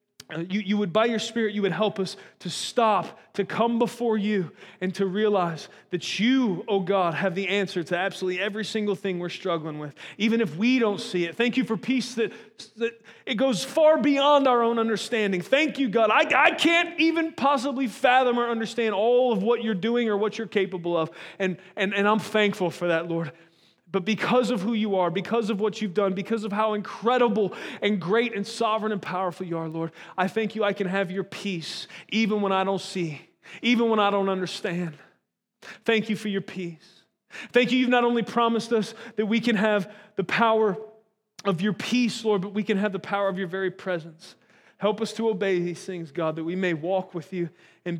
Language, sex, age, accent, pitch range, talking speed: English, male, 30-49, American, 185-225 Hz, 215 wpm